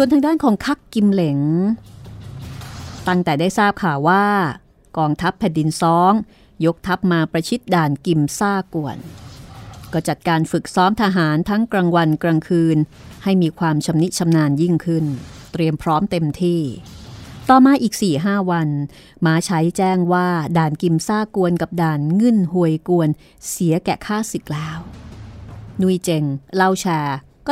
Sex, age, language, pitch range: female, 30-49, Thai, 155-190 Hz